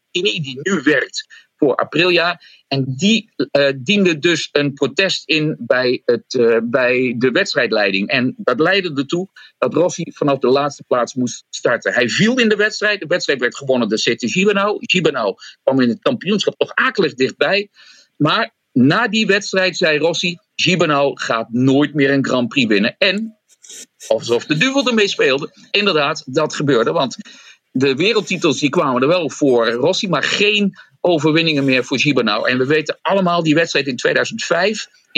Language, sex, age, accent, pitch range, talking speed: English, male, 50-69, Dutch, 140-205 Hz, 165 wpm